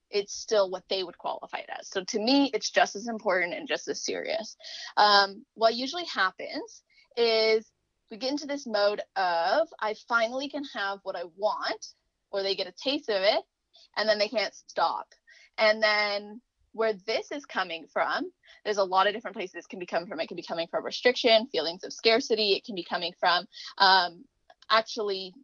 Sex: female